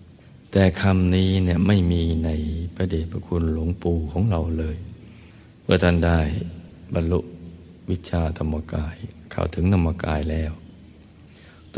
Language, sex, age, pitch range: Thai, male, 60-79, 80-95 Hz